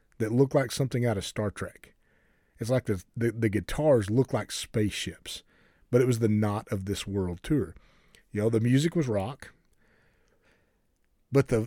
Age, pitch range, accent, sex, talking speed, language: 40-59, 110-145 Hz, American, male, 175 wpm, English